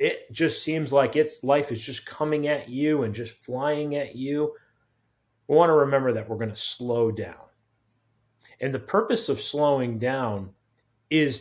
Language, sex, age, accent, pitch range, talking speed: English, male, 30-49, American, 115-135 Hz, 175 wpm